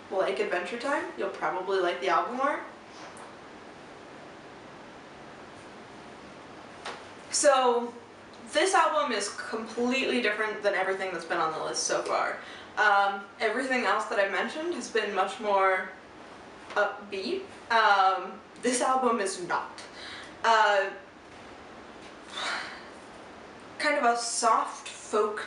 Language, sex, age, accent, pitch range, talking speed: English, female, 20-39, American, 190-240 Hz, 110 wpm